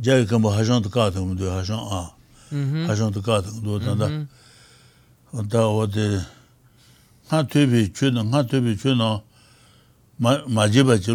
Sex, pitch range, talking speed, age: male, 105-130 Hz, 125 wpm, 60-79